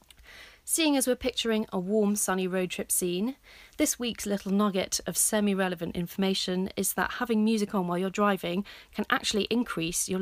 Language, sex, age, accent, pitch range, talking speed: English, female, 30-49, British, 185-230 Hz, 170 wpm